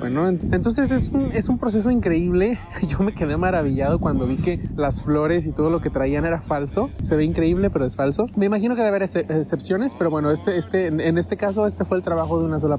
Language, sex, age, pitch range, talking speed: English, male, 20-39, 155-195 Hz, 240 wpm